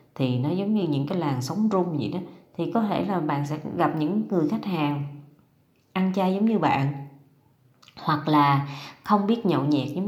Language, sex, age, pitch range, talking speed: Vietnamese, female, 20-39, 145-220 Hz, 200 wpm